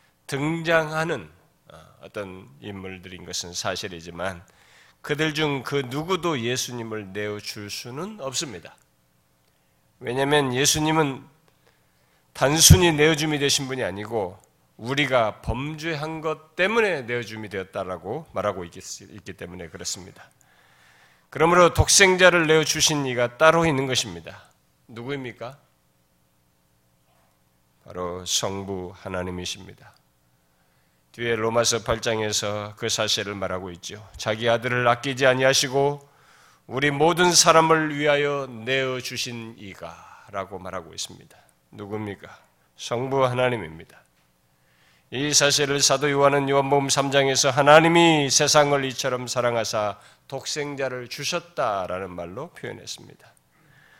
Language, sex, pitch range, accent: Korean, male, 90-145 Hz, native